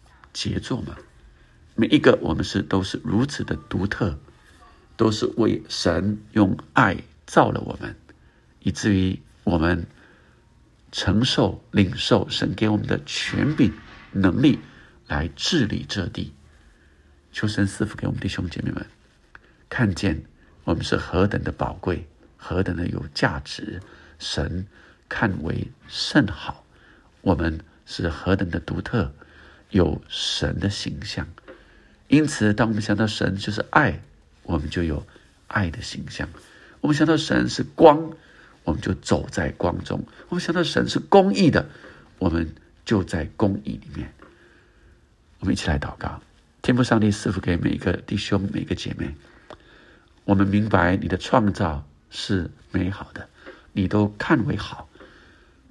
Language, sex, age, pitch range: Chinese, male, 60-79, 85-110 Hz